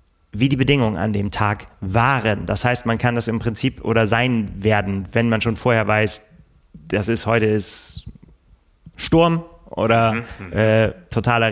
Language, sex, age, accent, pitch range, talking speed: German, male, 30-49, German, 110-135 Hz, 150 wpm